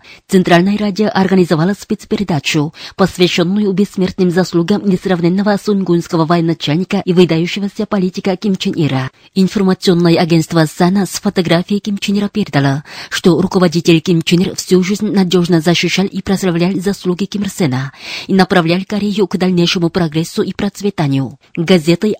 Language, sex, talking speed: Russian, female, 125 wpm